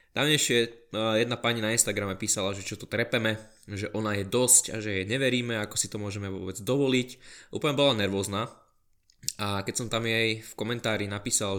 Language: Slovak